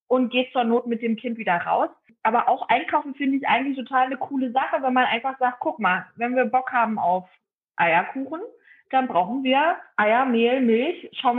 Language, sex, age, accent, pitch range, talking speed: German, female, 20-39, German, 230-270 Hz, 200 wpm